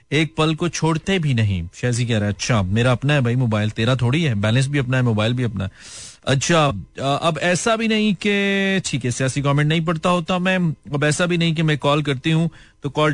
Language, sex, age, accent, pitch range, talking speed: Hindi, male, 40-59, native, 105-155 Hz, 230 wpm